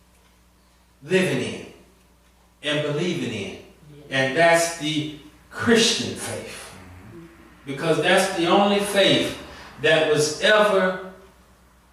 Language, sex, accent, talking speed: English, male, American, 90 wpm